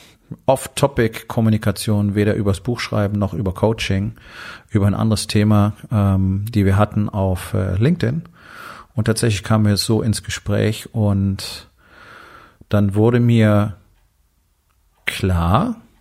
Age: 40-59